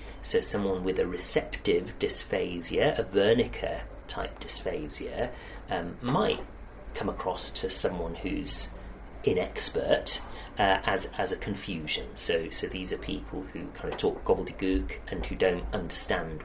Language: English